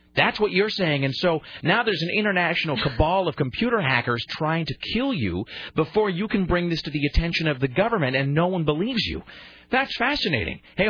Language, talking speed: English, 205 wpm